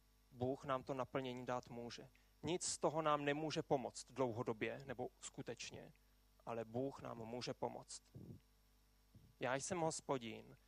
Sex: male